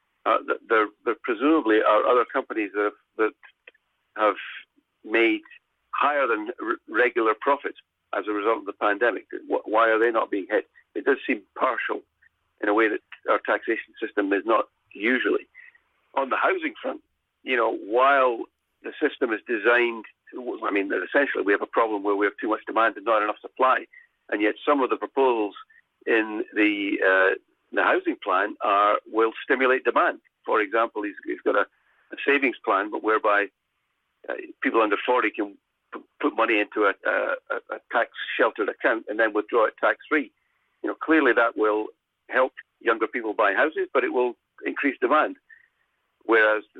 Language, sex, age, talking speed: English, male, 50-69, 170 wpm